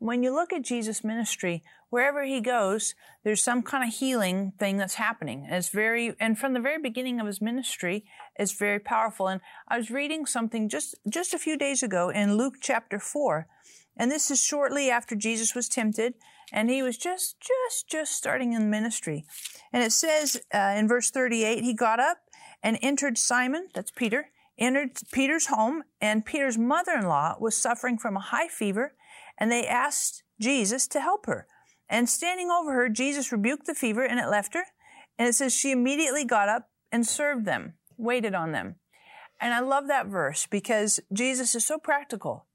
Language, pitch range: English, 220-280 Hz